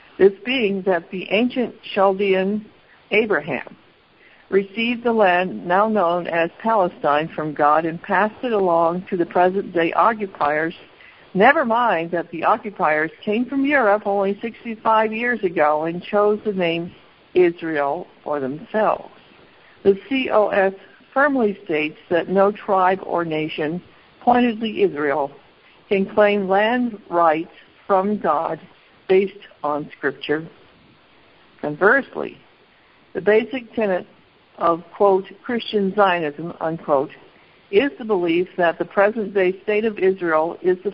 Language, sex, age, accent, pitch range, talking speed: English, female, 60-79, American, 170-220 Hz, 125 wpm